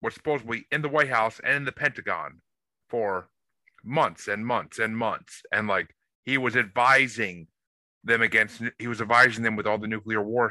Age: 30-49